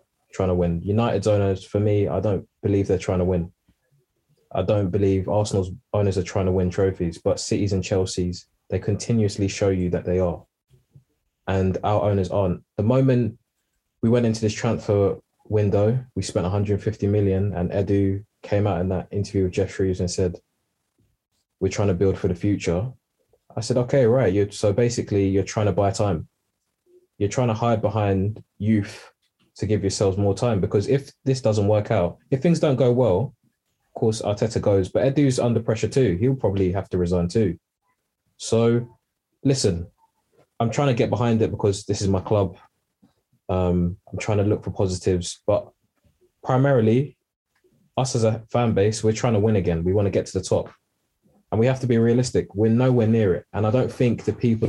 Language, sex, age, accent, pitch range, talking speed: English, male, 20-39, British, 95-115 Hz, 190 wpm